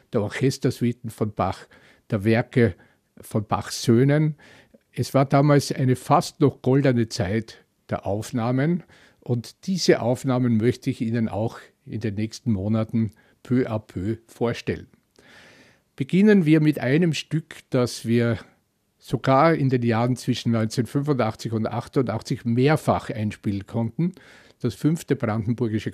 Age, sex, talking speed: 50-69, male, 125 wpm